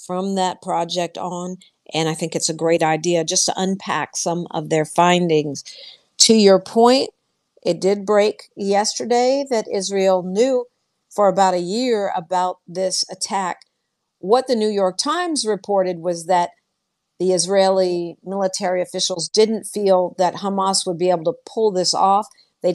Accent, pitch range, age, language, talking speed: American, 175-205 Hz, 50-69, English, 155 wpm